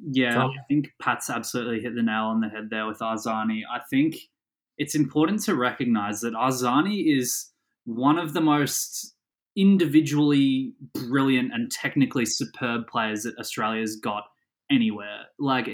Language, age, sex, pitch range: English, 20-39, male, 120-180 Hz